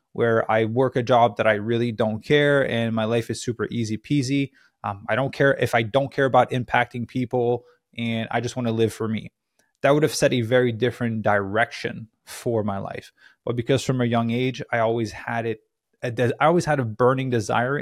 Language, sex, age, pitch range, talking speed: English, male, 20-39, 110-135 Hz, 210 wpm